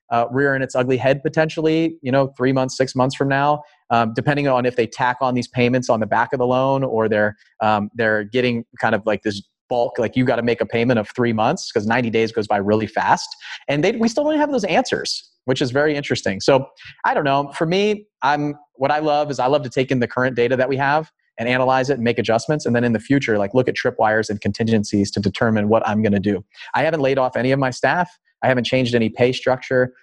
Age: 30-49